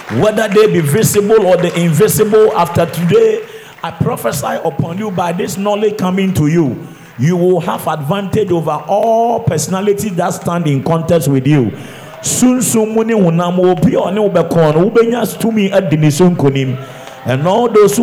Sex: male